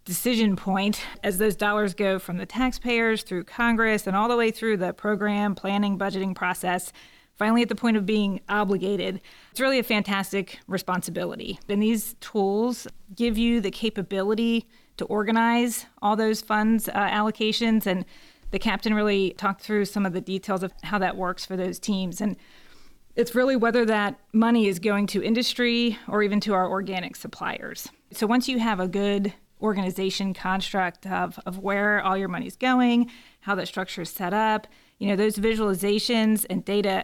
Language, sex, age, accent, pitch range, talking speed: English, female, 30-49, American, 190-225 Hz, 175 wpm